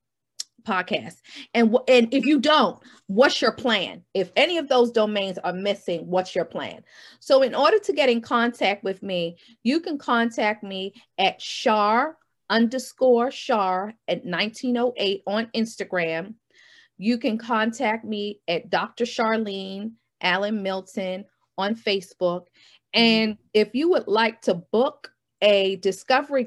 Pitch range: 200-240 Hz